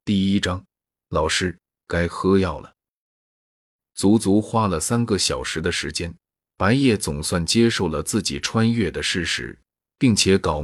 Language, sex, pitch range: Chinese, male, 85-110 Hz